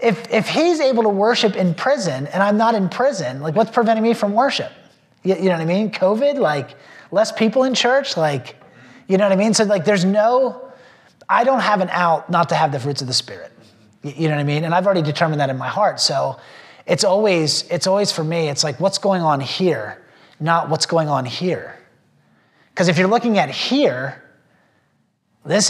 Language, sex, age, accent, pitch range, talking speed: English, male, 30-49, American, 145-210 Hz, 215 wpm